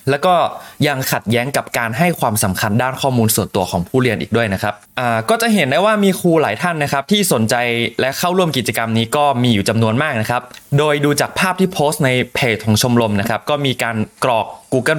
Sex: male